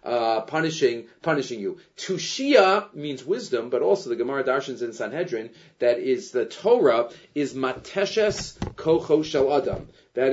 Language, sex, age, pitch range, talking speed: English, male, 30-49, 155-260 Hz, 135 wpm